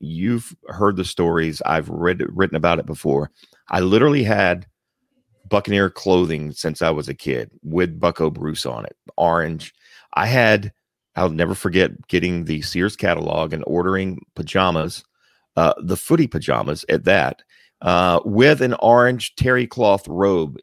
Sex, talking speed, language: male, 145 wpm, English